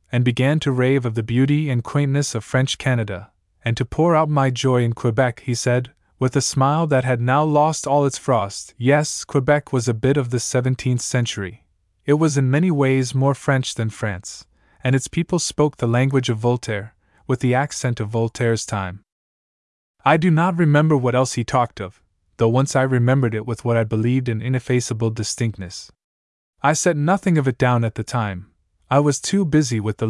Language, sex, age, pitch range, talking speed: English, male, 20-39, 110-140 Hz, 200 wpm